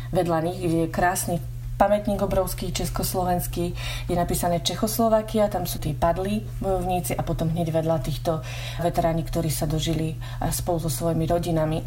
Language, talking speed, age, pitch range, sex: Slovak, 140 wpm, 30-49, 150-175 Hz, female